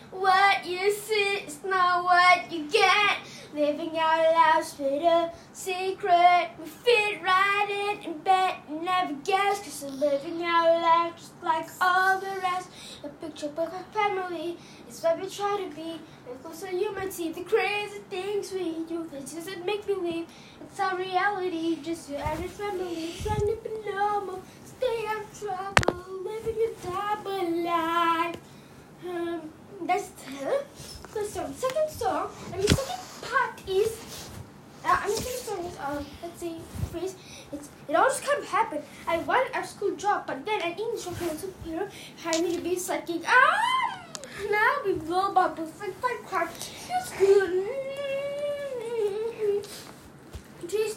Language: English